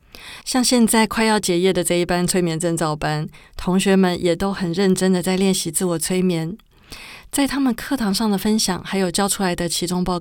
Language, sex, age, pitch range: Chinese, female, 20-39, 170-200 Hz